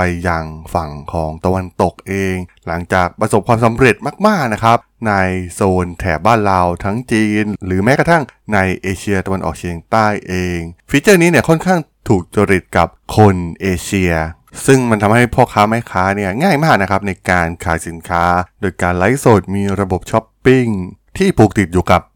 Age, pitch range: 20-39, 90-115 Hz